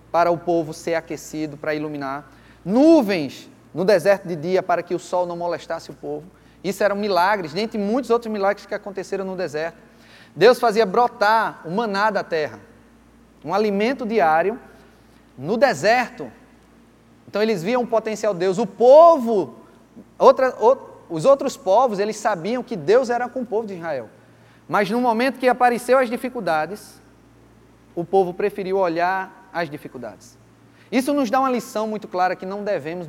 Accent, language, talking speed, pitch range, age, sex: Brazilian, Portuguese, 165 wpm, 170-225 Hz, 20-39, male